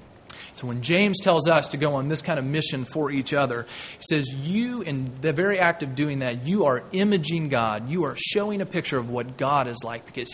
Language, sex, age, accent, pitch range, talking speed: English, male, 30-49, American, 135-190 Hz, 230 wpm